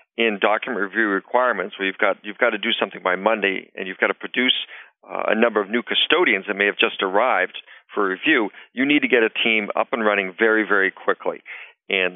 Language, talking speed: English, 230 wpm